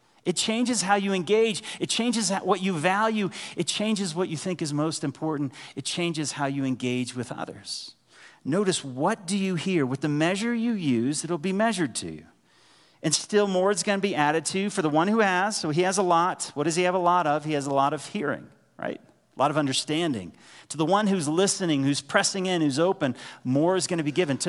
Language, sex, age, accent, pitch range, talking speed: English, male, 40-59, American, 145-185 Hz, 230 wpm